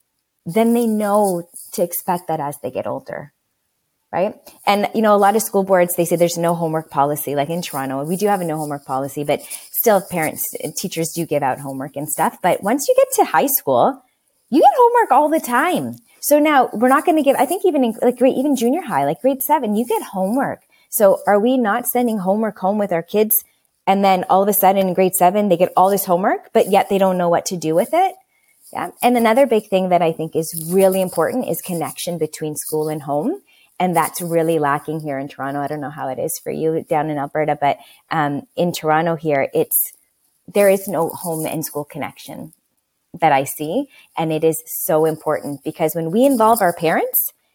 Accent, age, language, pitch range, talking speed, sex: American, 20-39, English, 155-220 Hz, 220 wpm, female